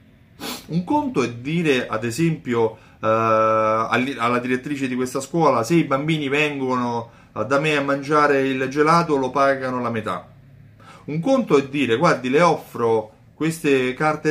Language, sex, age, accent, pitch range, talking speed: Italian, male, 30-49, native, 110-145 Hz, 145 wpm